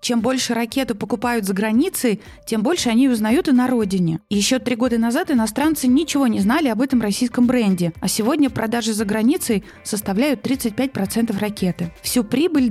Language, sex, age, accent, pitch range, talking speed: Russian, female, 20-39, native, 200-255 Hz, 165 wpm